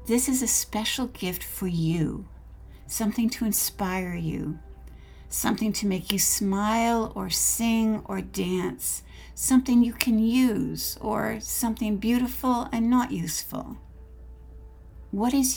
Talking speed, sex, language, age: 125 wpm, female, English, 60-79